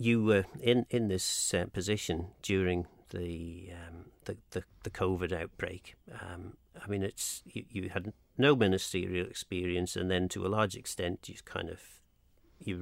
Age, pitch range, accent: 50-69, 90-105 Hz, British